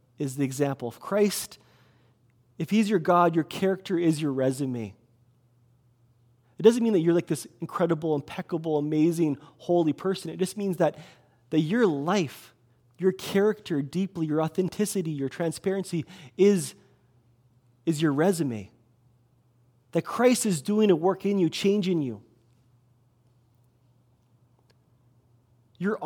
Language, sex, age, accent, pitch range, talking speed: English, male, 30-49, American, 125-190 Hz, 125 wpm